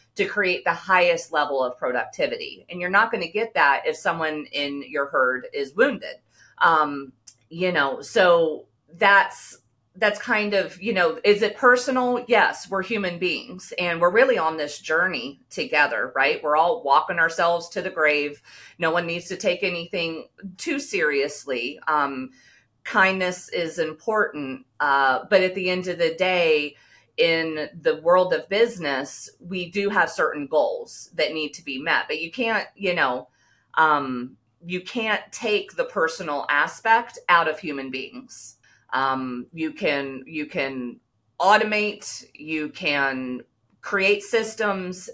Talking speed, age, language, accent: 150 wpm, 40-59, English, American